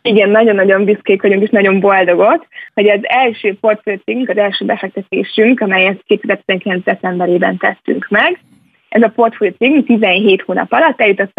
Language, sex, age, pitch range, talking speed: Hungarian, female, 20-39, 190-220 Hz, 150 wpm